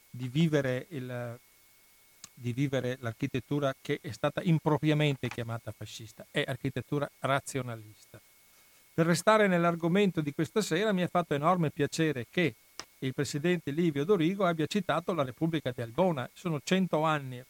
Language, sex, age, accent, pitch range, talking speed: Italian, male, 50-69, native, 130-165 Hz, 135 wpm